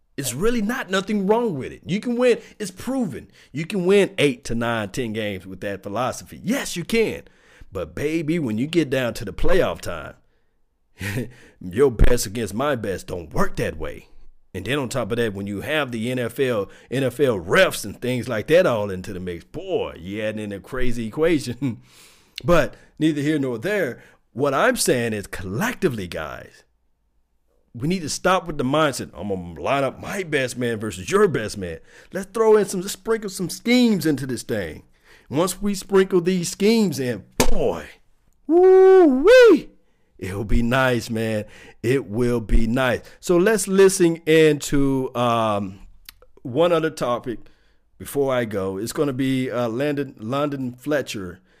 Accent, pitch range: American, 110-180 Hz